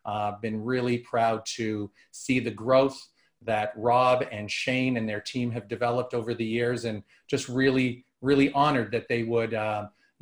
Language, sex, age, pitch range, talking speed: English, male, 40-59, 115-140 Hz, 170 wpm